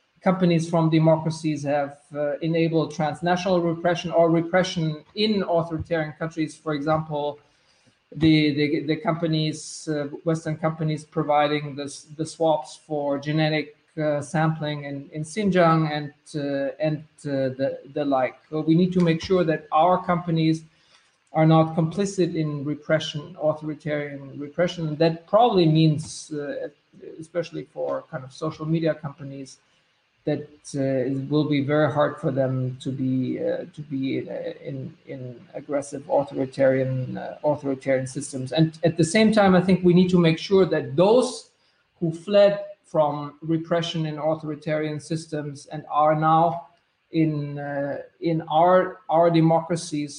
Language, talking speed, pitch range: English, 140 wpm, 145-165 Hz